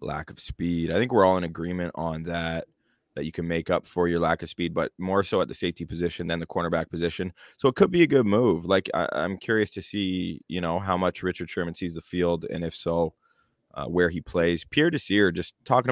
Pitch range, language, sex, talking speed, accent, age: 85-95 Hz, English, male, 240 wpm, American, 20-39